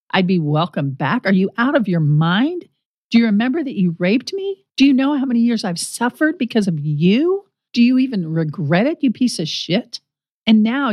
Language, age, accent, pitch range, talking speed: English, 50-69, American, 175-255 Hz, 215 wpm